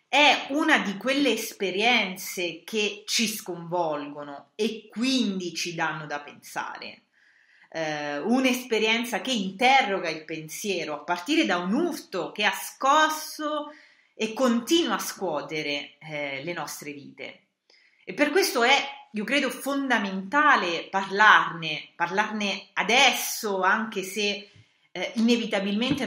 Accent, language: native, Italian